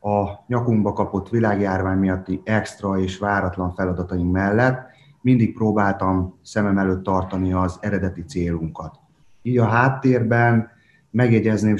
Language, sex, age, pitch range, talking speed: Hungarian, male, 30-49, 95-105 Hz, 110 wpm